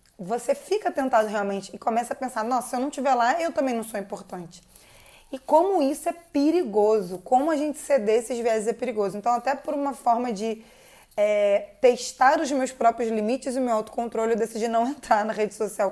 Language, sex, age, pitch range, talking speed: Portuguese, female, 20-39, 215-260 Hz, 205 wpm